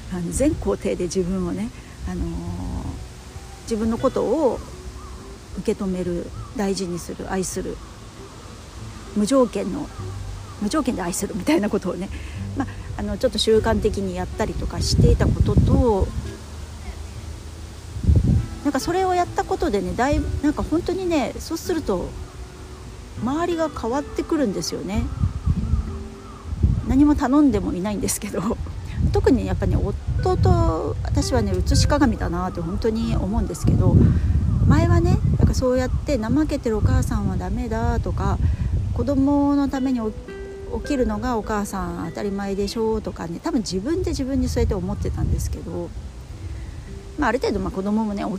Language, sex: Japanese, female